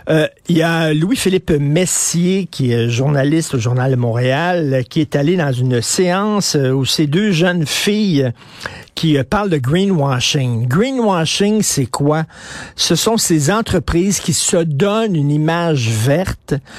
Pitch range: 130-165 Hz